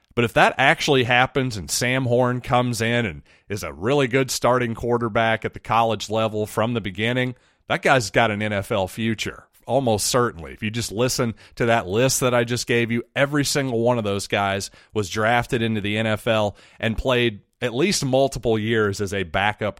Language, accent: English, American